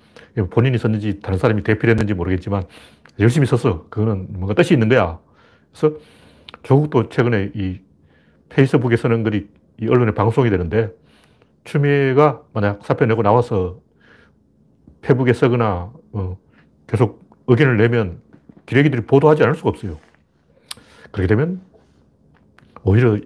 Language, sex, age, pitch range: Korean, male, 40-59, 100-135 Hz